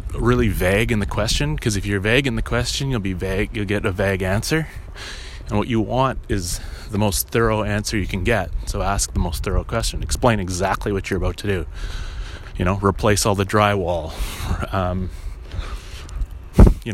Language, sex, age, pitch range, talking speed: English, male, 30-49, 85-115 Hz, 190 wpm